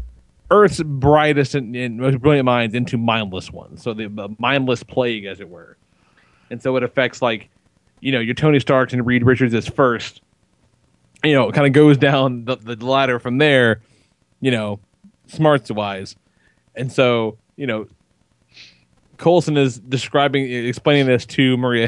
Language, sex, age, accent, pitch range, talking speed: English, male, 30-49, American, 115-145 Hz, 165 wpm